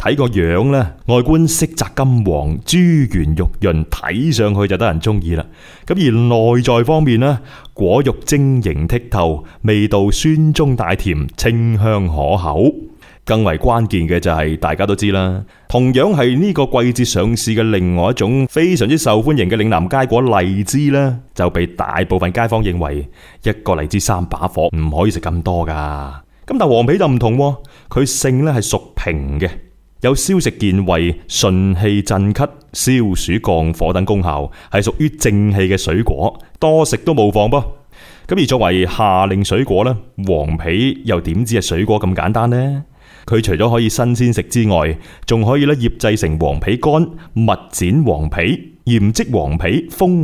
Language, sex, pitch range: Chinese, male, 90-125 Hz